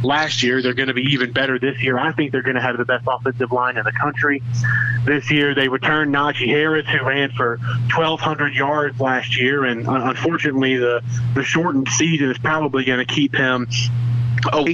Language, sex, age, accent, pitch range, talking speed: English, male, 30-49, American, 125-145 Hz, 200 wpm